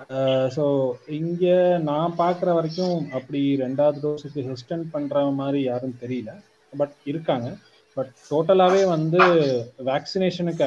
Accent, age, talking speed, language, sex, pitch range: native, 30-49, 105 wpm, Tamil, male, 130-155 Hz